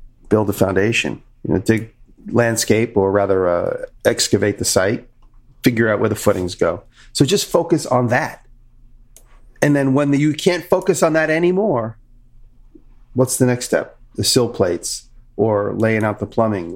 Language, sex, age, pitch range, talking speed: English, male, 40-59, 105-125 Hz, 160 wpm